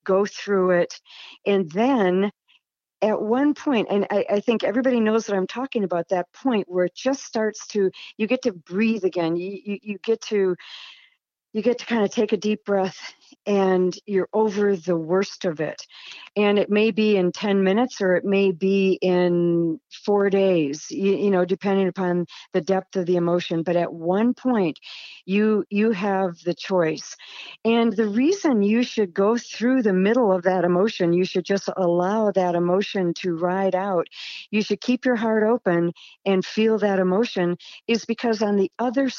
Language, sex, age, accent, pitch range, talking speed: English, female, 50-69, American, 180-220 Hz, 185 wpm